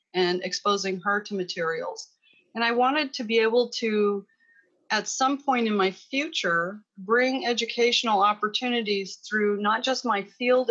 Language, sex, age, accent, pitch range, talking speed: English, female, 40-59, American, 190-235 Hz, 145 wpm